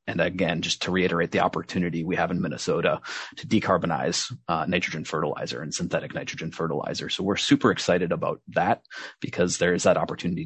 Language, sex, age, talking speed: English, male, 30-49, 180 wpm